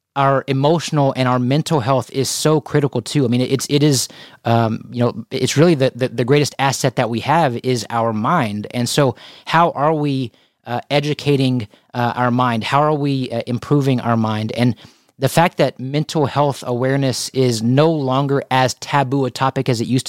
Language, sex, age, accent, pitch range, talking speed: English, male, 30-49, American, 125-150 Hz, 195 wpm